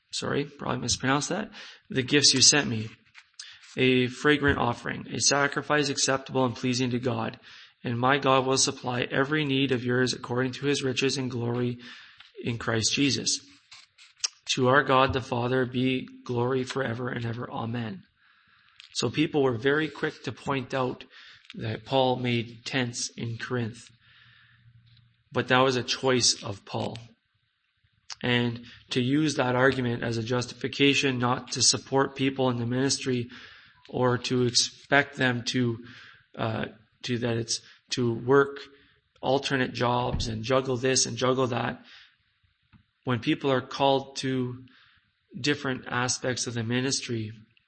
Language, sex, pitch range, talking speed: English, male, 120-135 Hz, 140 wpm